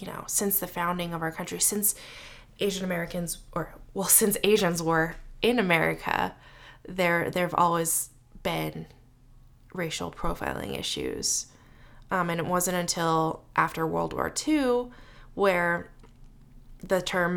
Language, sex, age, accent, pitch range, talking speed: English, female, 20-39, American, 130-185 Hz, 130 wpm